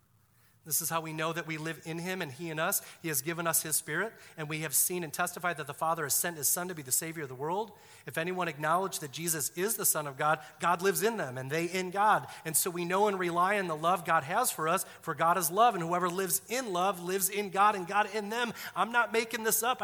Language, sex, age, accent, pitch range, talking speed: English, male, 30-49, American, 150-200 Hz, 280 wpm